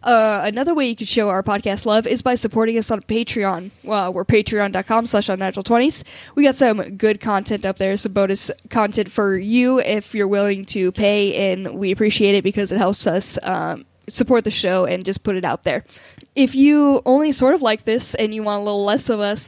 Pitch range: 195-230 Hz